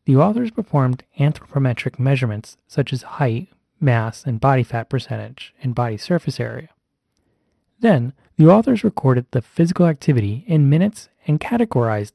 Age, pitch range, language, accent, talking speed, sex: 30-49, 120-165 Hz, English, American, 140 wpm, male